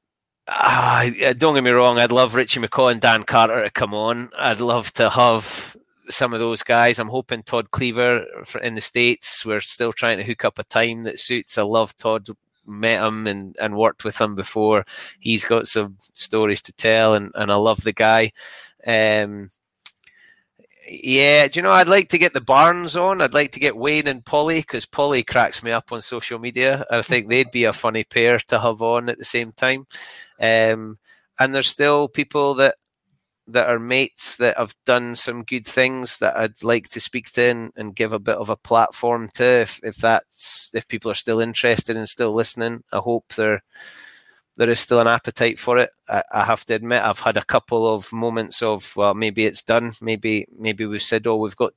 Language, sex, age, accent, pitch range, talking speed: English, male, 30-49, British, 110-125 Hz, 205 wpm